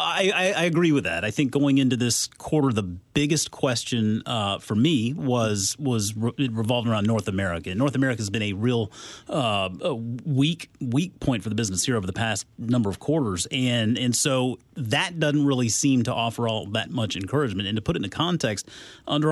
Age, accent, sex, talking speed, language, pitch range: 30-49, American, male, 200 wpm, English, 105-135 Hz